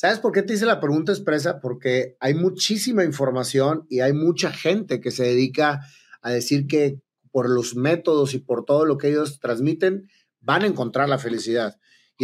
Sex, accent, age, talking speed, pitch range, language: male, Mexican, 30-49, 185 wpm, 130-160 Hz, English